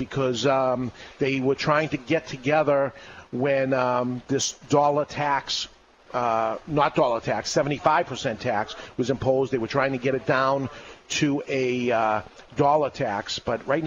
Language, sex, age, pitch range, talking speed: English, male, 40-59, 125-150 Hz, 150 wpm